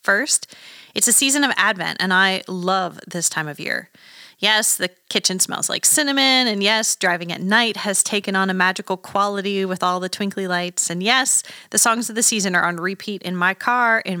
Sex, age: female, 30-49